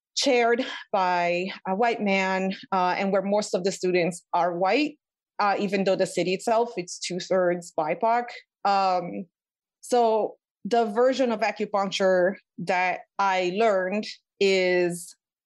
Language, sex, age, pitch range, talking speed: English, female, 30-49, 180-215 Hz, 130 wpm